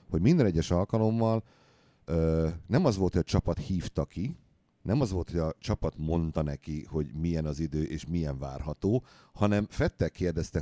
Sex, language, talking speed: male, Hungarian, 175 wpm